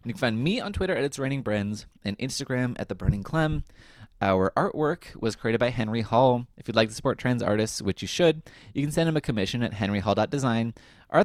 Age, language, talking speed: 20-39, English, 230 wpm